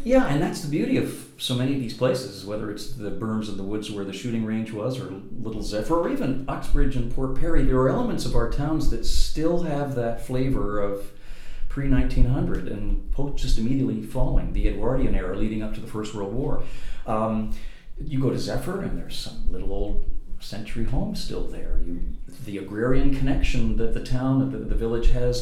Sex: male